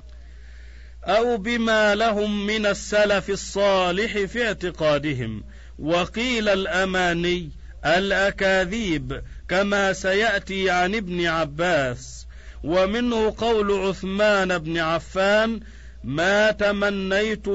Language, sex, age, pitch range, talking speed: Arabic, male, 50-69, 150-200 Hz, 80 wpm